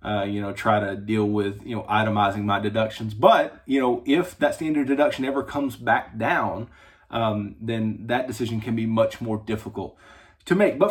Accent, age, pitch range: American, 30-49, 110-125 Hz